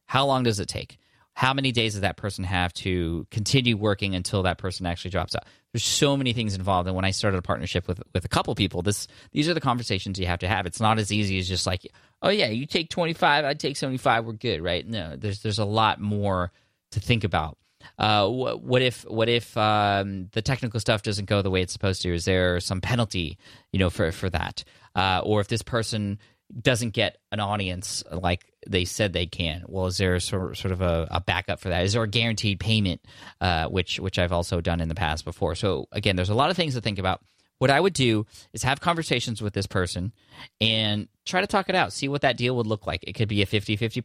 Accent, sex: American, male